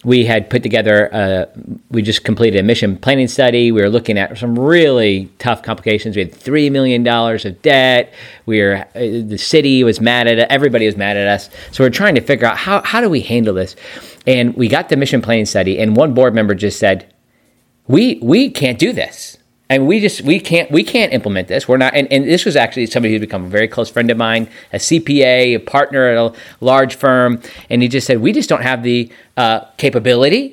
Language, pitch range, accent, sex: English, 110-135 Hz, American, male